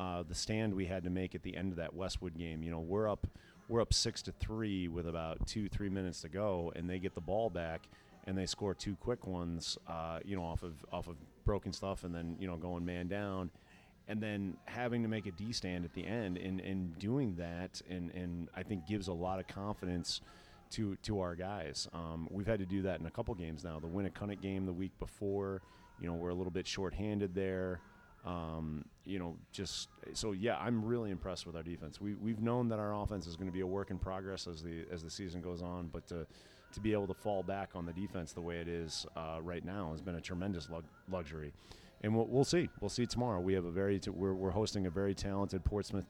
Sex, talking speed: male, 240 wpm